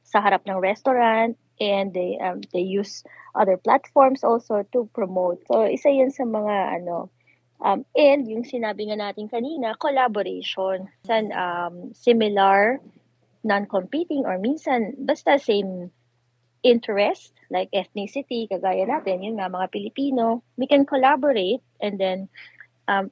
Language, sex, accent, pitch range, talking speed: Filipino, female, native, 195-250 Hz, 130 wpm